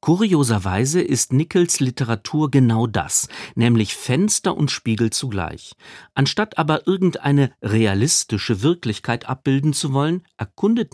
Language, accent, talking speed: German, German, 110 wpm